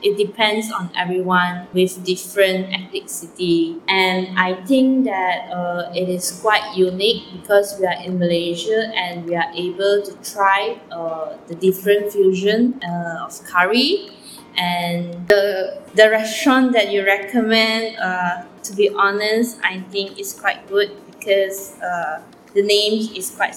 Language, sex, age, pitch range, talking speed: Malay, female, 20-39, 185-240 Hz, 145 wpm